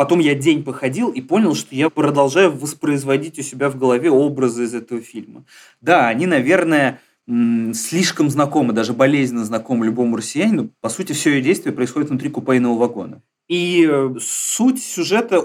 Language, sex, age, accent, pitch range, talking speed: Russian, male, 30-49, native, 125-160 Hz, 155 wpm